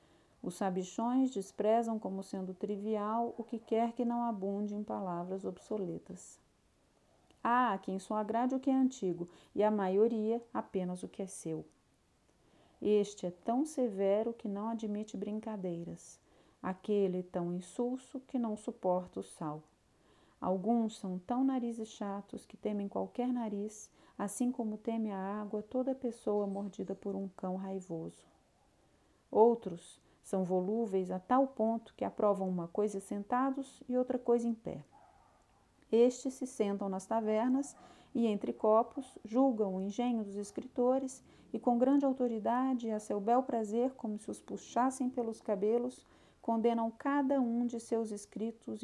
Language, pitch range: Portuguese, 195-240 Hz